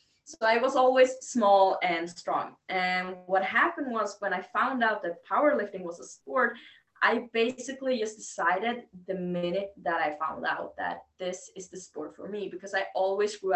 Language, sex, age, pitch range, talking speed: English, female, 20-39, 175-210 Hz, 180 wpm